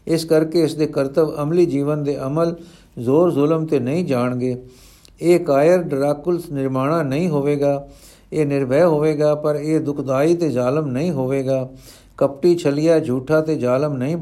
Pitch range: 130-165 Hz